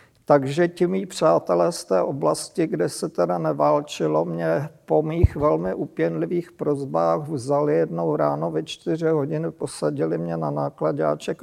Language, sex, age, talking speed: Czech, male, 50-69, 140 wpm